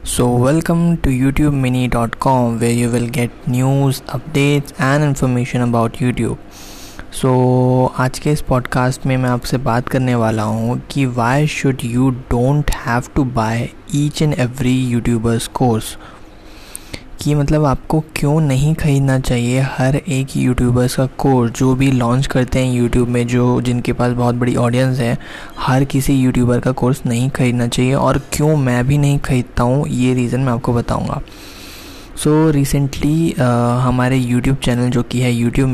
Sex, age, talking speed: male, 20-39, 165 wpm